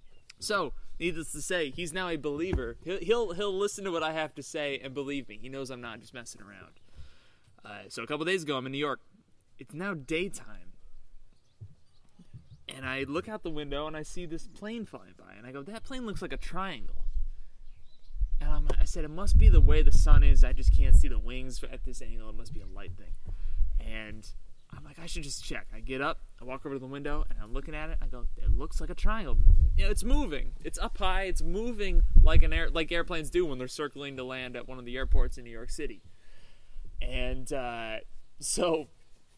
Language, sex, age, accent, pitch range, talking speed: English, male, 20-39, American, 100-160 Hz, 230 wpm